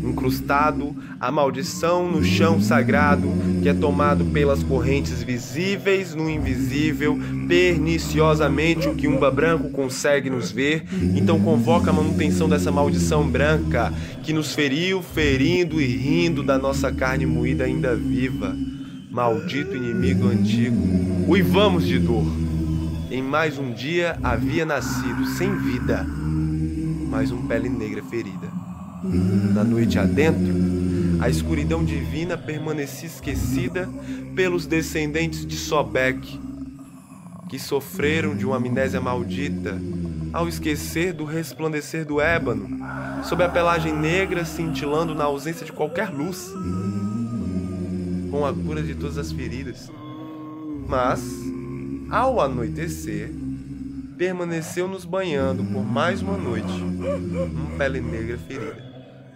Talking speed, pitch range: 115 wpm, 90-150 Hz